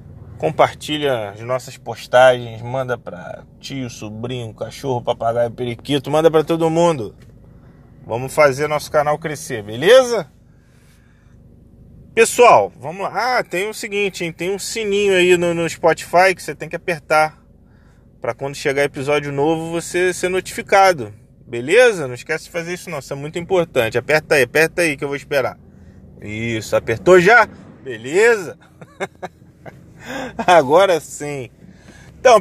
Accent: Brazilian